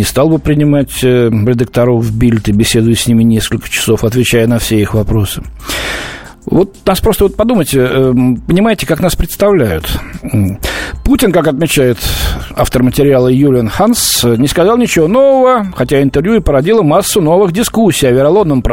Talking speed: 145 wpm